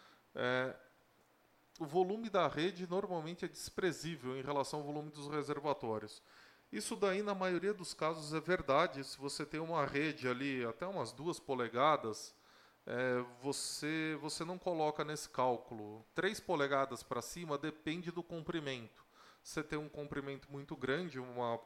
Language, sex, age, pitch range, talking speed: Portuguese, male, 20-39, 130-165 Hz, 145 wpm